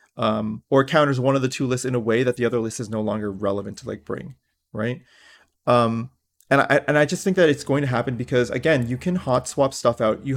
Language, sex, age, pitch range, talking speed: English, male, 30-49, 115-145 Hz, 255 wpm